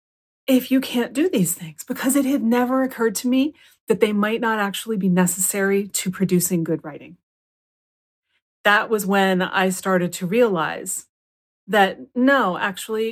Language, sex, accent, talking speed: English, female, American, 155 wpm